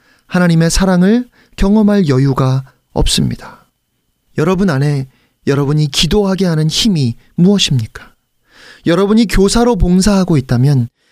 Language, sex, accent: Korean, male, native